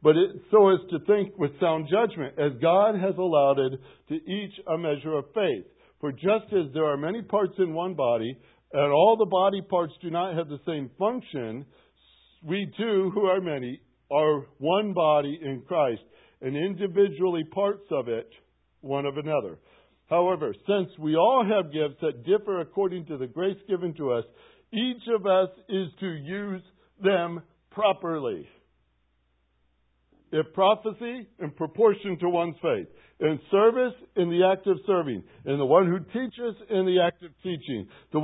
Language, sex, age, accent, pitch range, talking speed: English, male, 60-79, American, 140-195 Hz, 165 wpm